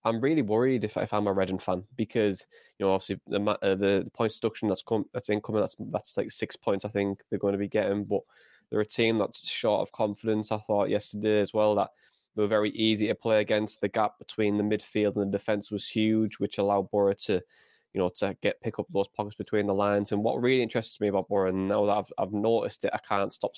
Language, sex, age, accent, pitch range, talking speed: English, male, 20-39, British, 100-110 Hz, 250 wpm